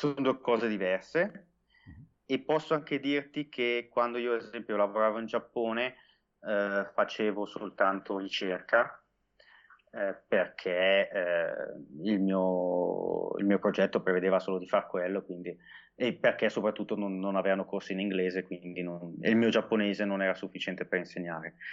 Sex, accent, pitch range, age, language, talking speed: male, native, 95-115 Hz, 30-49, Italian, 150 wpm